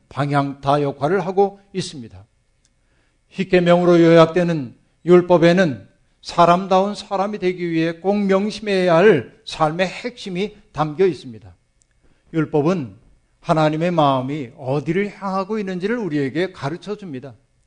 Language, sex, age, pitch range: Korean, male, 50-69, 140-185 Hz